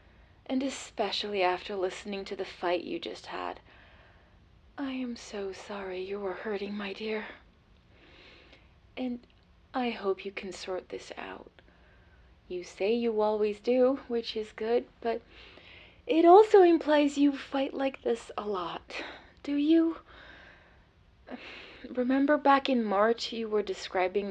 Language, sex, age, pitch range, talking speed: English, female, 30-49, 175-235 Hz, 135 wpm